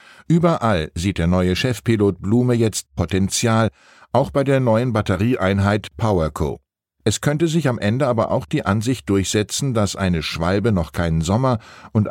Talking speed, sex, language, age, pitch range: 155 wpm, male, German, 60-79, 95-120 Hz